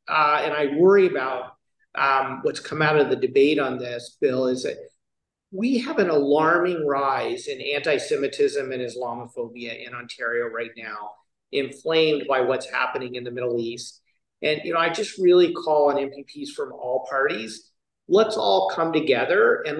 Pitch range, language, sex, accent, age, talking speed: 130-160 Hz, English, male, American, 40-59, 160 wpm